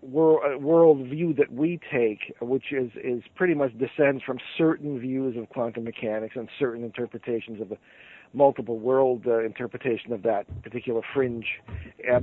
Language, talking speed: English, 150 wpm